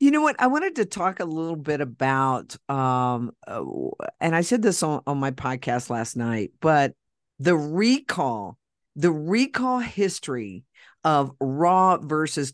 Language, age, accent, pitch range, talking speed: English, 50-69, American, 135-180 Hz, 150 wpm